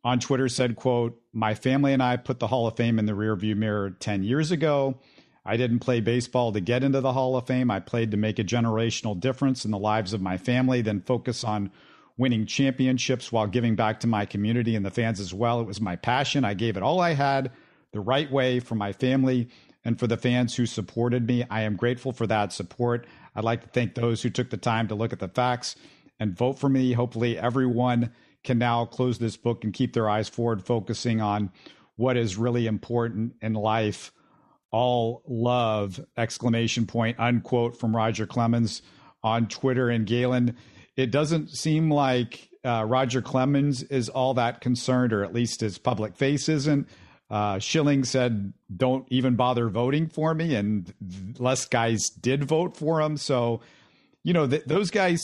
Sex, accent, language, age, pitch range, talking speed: male, American, English, 50-69, 110-130 Hz, 195 wpm